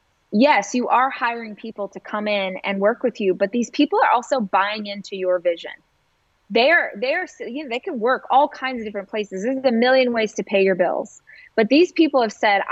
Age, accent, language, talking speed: 20-39, American, English, 215 wpm